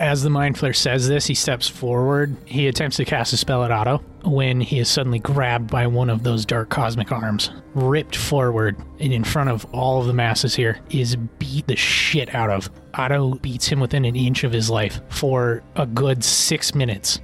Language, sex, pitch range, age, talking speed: English, male, 115-140 Hz, 20-39, 210 wpm